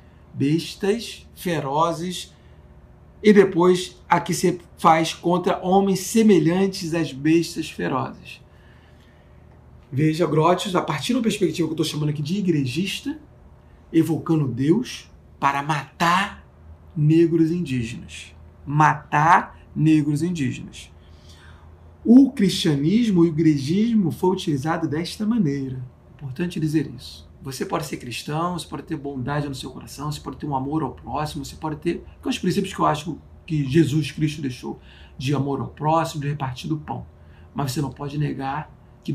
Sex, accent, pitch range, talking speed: male, Brazilian, 130-170 Hz, 145 wpm